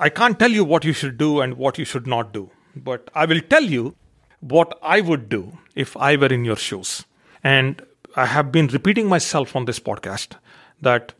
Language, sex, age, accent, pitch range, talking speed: English, male, 40-59, Indian, 120-145 Hz, 210 wpm